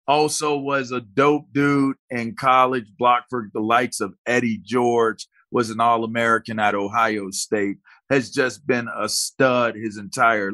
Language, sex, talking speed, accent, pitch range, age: English, male, 155 wpm, American, 115-155 Hz, 40-59